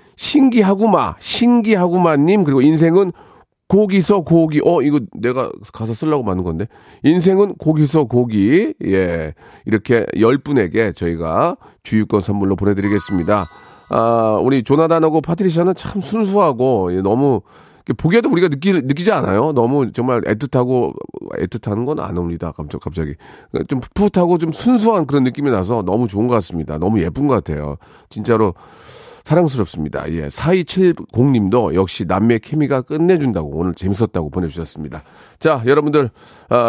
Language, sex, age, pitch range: Korean, male, 40-59, 105-165 Hz